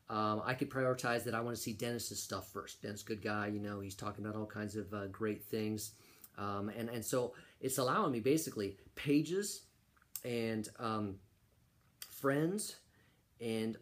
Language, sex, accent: English, male, American